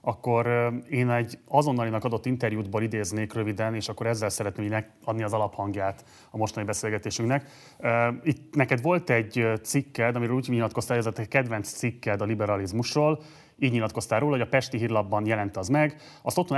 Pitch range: 110-135 Hz